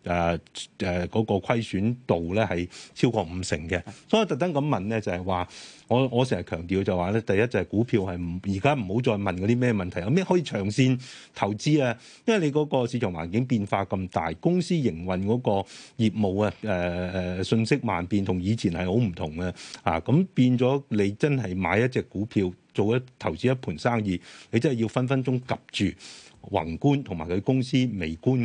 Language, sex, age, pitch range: Chinese, male, 30-49, 90-120 Hz